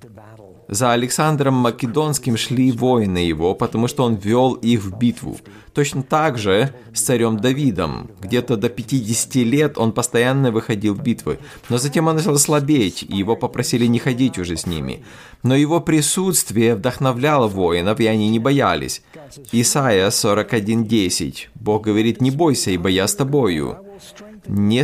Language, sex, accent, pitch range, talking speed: Russian, male, native, 105-135 Hz, 145 wpm